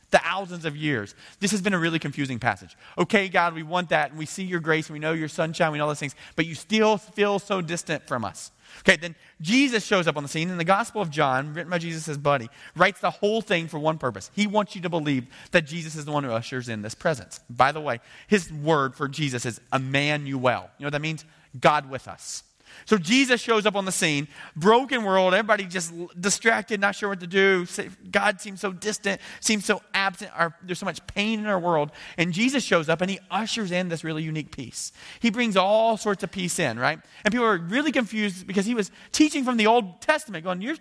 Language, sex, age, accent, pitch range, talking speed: English, male, 30-49, American, 155-215 Hz, 240 wpm